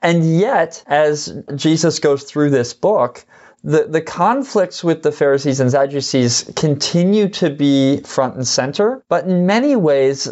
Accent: American